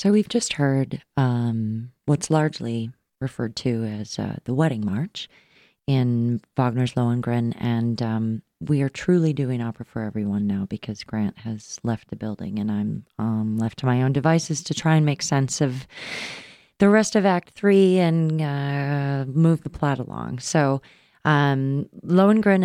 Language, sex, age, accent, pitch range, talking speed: English, female, 30-49, American, 120-155 Hz, 160 wpm